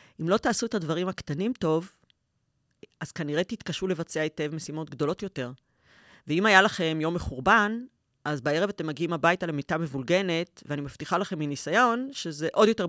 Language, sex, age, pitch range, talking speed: Hebrew, female, 30-49, 155-215 Hz, 160 wpm